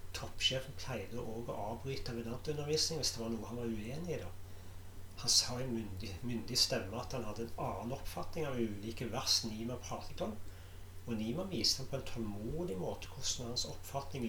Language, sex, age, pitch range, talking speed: English, male, 40-59, 95-120 Hz, 180 wpm